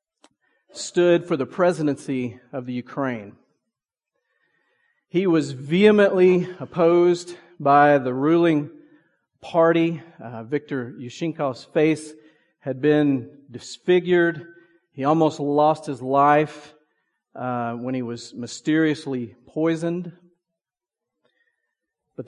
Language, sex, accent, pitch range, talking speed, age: English, male, American, 135-175 Hz, 90 wpm, 40-59